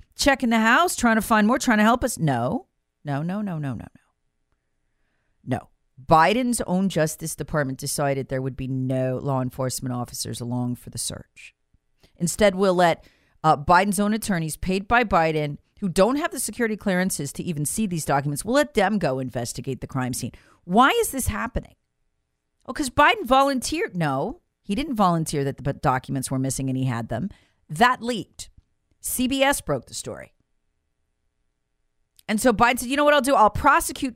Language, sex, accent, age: English, female, American, 40-59